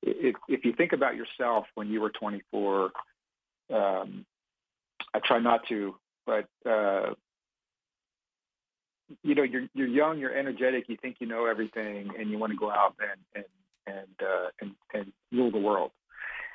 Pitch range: 105-135 Hz